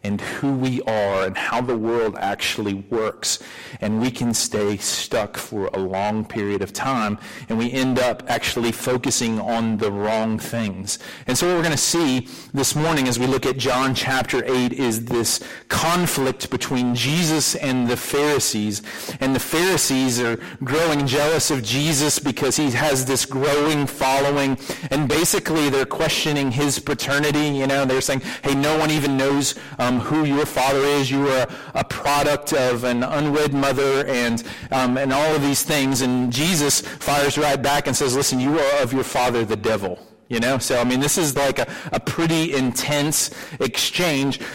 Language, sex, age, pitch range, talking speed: English, male, 40-59, 120-150 Hz, 175 wpm